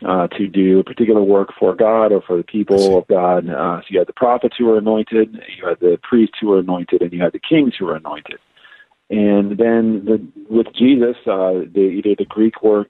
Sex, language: male, English